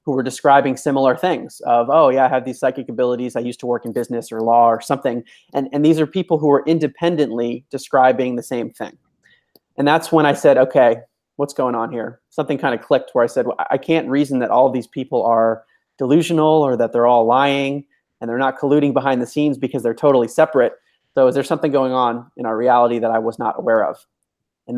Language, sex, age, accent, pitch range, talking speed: English, male, 30-49, American, 120-145 Hz, 230 wpm